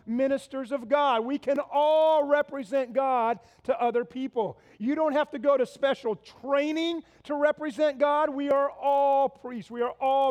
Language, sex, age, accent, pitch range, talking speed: English, male, 40-59, American, 210-285 Hz, 170 wpm